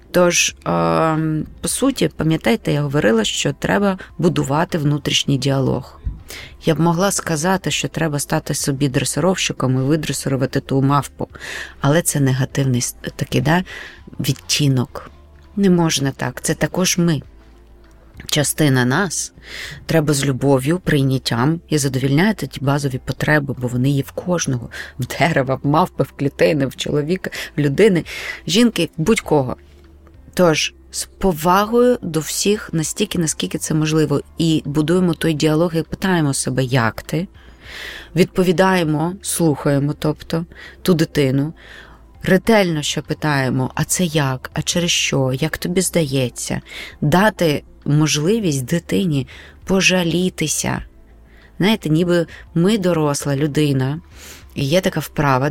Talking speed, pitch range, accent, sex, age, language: 120 wpm, 135-170 Hz, native, female, 20-39, Ukrainian